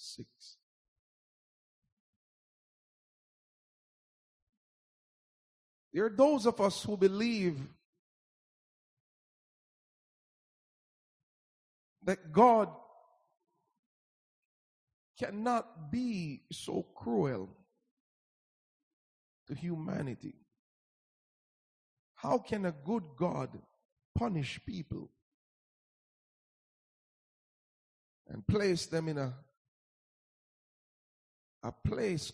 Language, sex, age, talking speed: English, male, 50-69, 55 wpm